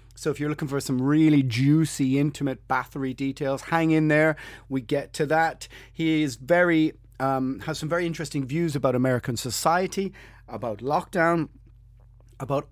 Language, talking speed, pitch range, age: English, 145 wpm, 120-155 Hz, 30-49